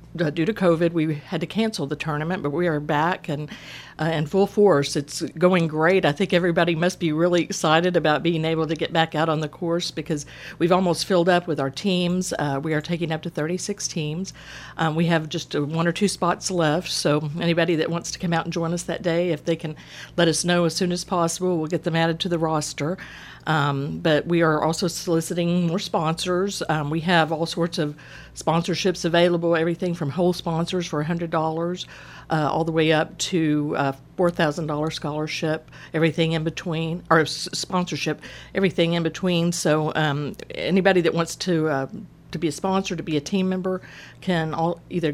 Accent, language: American, English